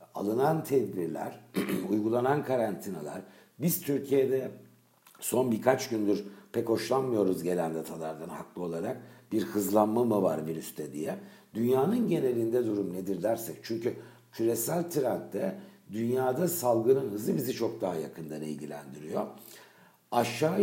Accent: native